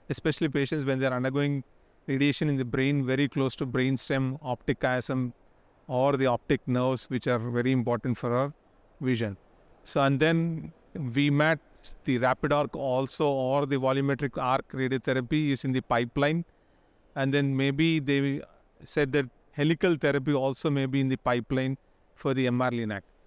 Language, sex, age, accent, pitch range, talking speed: English, male, 30-49, Indian, 130-150 Hz, 155 wpm